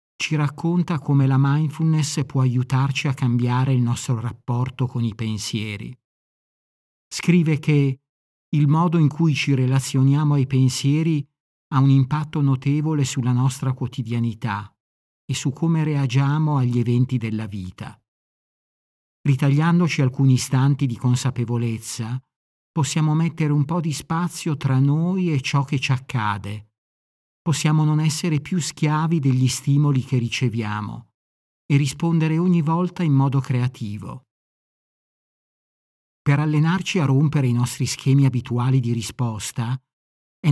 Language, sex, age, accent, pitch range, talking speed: Italian, male, 50-69, native, 125-150 Hz, 125 wpm